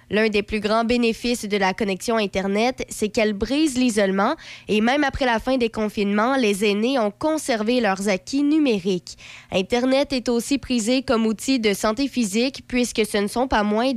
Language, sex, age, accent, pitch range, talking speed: French, female, 20-39, Canadian, 205-255 Hz, 180 wpm